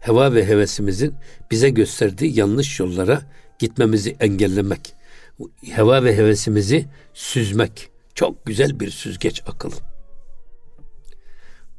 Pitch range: 105-145 Hz